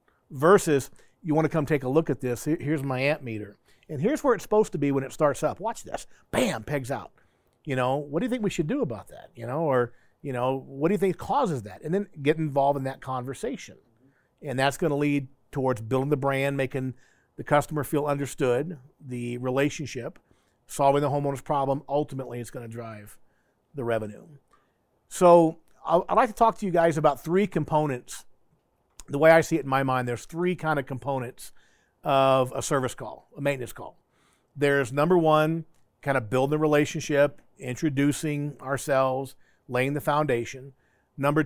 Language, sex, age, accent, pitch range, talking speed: English, male, 50-69, American, 130-155 Hz, 190 wpm